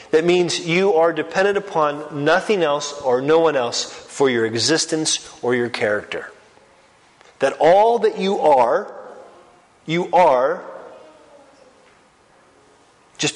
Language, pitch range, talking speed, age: English, 135-165 Hz, 115 wpm, 30-49